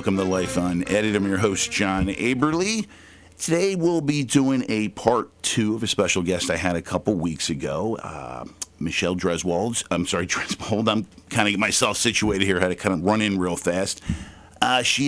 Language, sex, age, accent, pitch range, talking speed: English, male, 50-69, American, 95-115 Hz, 205 wpm